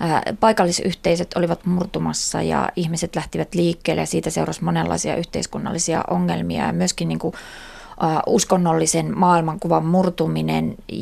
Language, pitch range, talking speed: Finnish, 165-190 Hz, 110 wpm